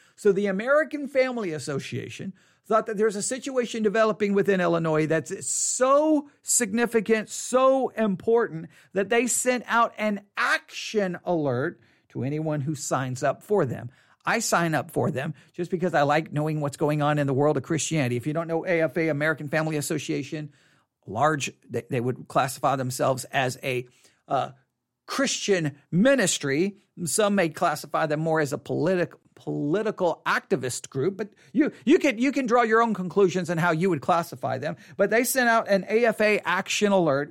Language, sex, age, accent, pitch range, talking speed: English, male, 50-69, American, 150-215 Hz, 165 wpm